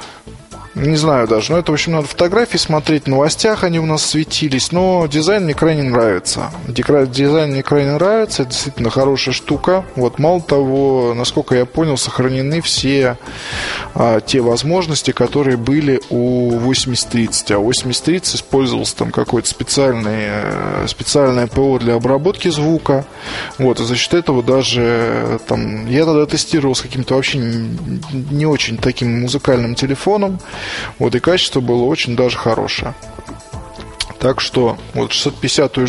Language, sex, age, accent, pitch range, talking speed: Russian, male, 20-39, native, 120-150 Hz, 140 wpm